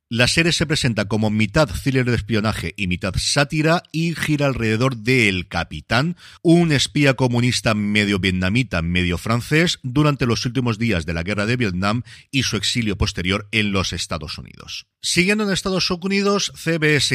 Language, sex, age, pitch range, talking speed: Spanish, male, 40-59, 95-140 Hz, 165 wpm